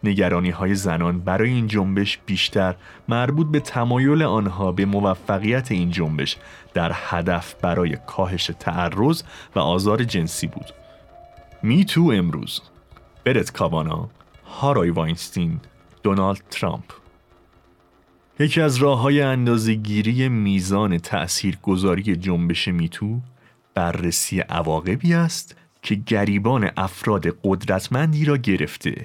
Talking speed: 110 wpm